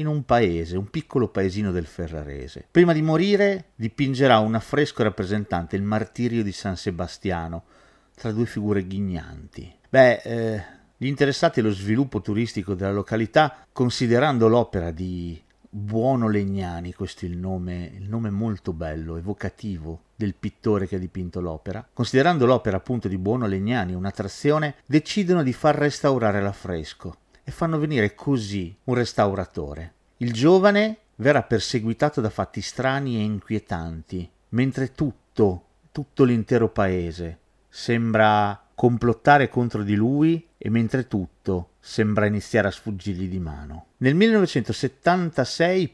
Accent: native